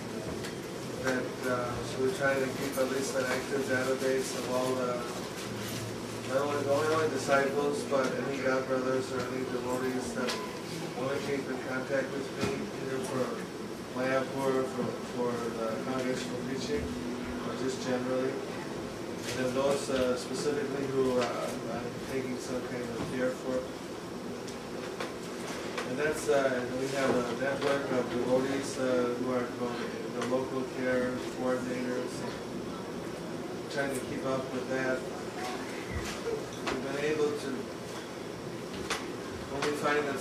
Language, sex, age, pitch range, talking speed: English, male, 20-39, 125-135 Hz, 140 wpm